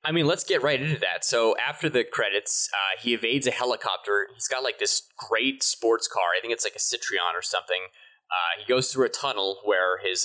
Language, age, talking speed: English, 20-39, 230 wpm